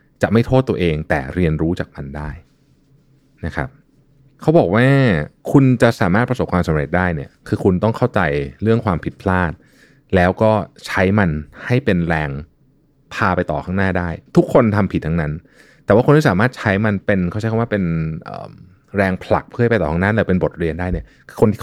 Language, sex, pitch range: Thai, male, 85-115 Hz